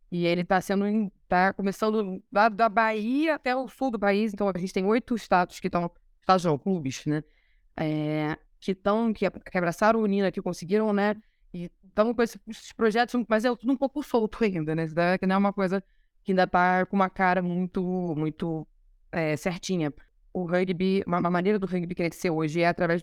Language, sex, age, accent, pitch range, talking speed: Portuguese, female, 20-39, Brazilian, 175-230 Hz, 195 wpm